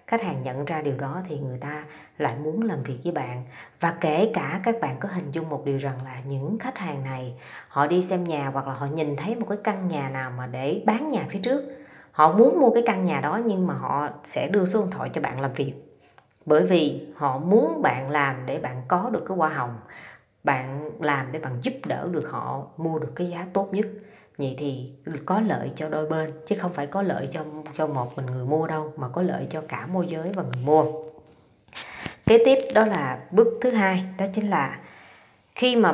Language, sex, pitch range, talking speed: Vietnamese, female, 145-195 Hz, 230 wpm